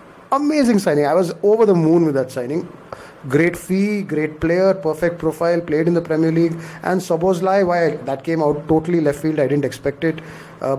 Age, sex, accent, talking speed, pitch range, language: 30-49, male, Indian, 195 wpm, 145-190 Hz, English